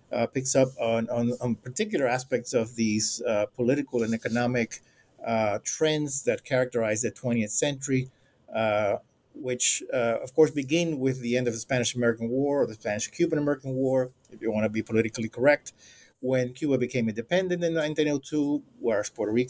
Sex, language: male, English